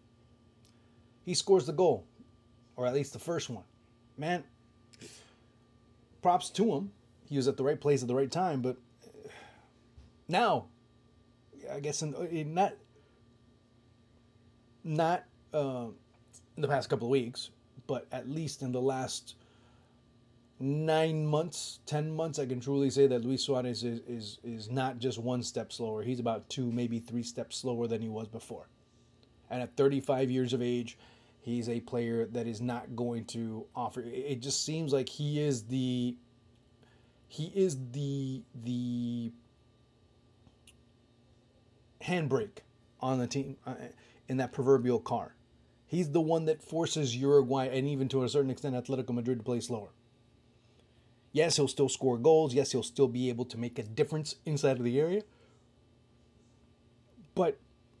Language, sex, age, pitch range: English, male, 30-49, 120-140 Hz